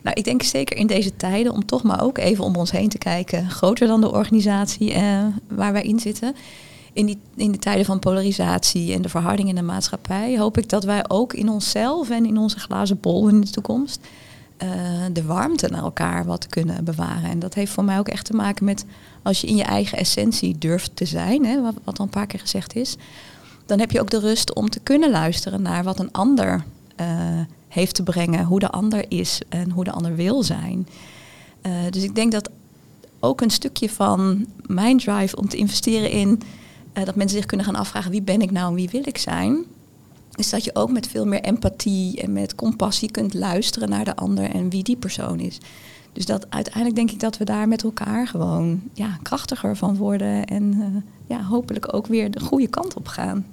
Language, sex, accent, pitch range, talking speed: Dutch, female, Dutch, 185-220 Hz, 220 wpm